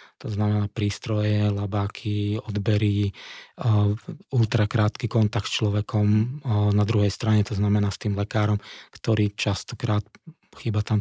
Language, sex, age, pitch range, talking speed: Slovak, male, 20-39, 105-115 Hz, 125 wpm